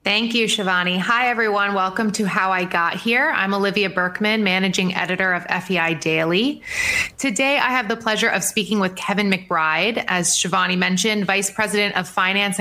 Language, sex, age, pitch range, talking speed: English, female, 30-49, 180-220 Hz, 170 wpm